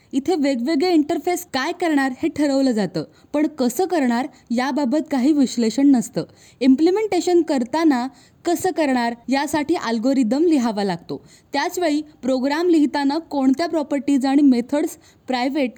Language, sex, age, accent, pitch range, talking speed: Marathi, female, 20-39, native, 250-310 Hz, 100 wpm